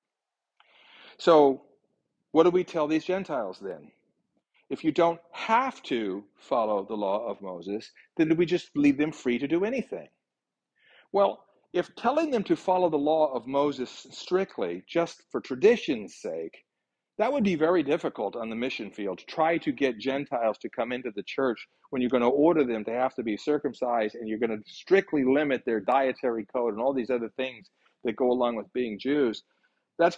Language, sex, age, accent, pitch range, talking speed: English, male, 50-69, American, 130-180 Hz, 185 wpm